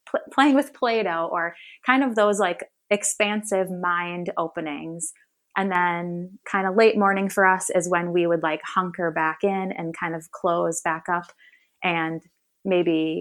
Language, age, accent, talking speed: English, 20-39, American, 160 wpm